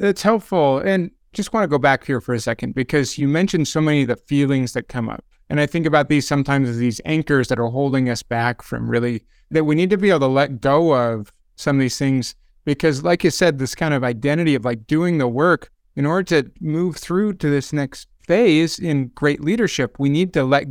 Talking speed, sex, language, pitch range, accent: 240 wpm, male, English, 125-160 Hz, American